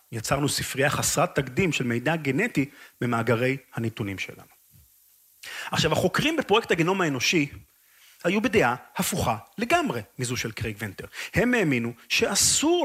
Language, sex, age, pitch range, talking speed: Hebrew, male, 30-49, 120-175 Hz, 120 wpm